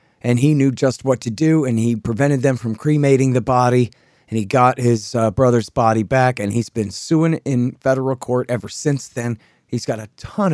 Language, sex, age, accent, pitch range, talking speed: English, male, 30-49, American, 110-135 Hz, 210 wpm